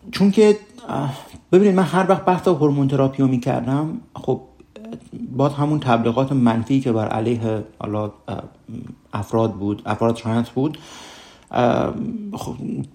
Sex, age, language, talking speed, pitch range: male, 50-69, Persian, 115 wpm, 110-145 Hz